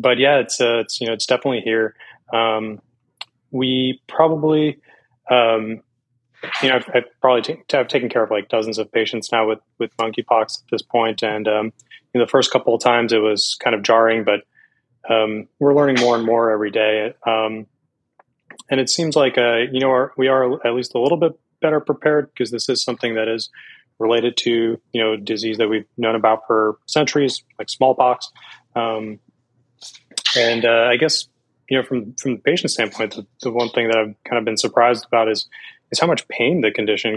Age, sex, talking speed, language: 20-39, male, 200 wpm, English